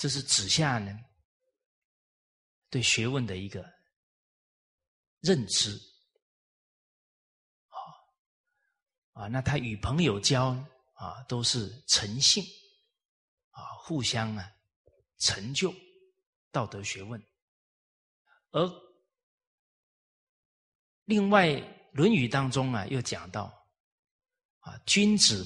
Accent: native